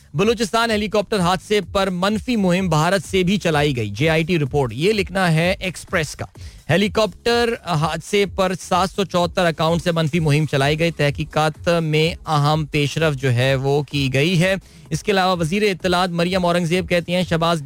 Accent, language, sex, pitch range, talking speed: native, Hindi, male, 145-195 Hz, 175 wpm